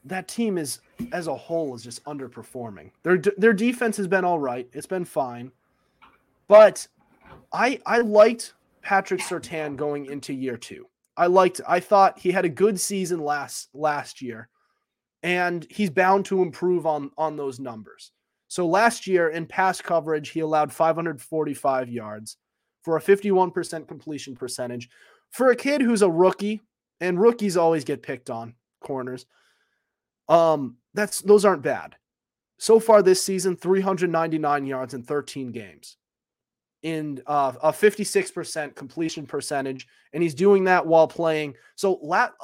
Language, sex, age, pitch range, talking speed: English, male, 30-49, 135-190 Hz, 150 wpm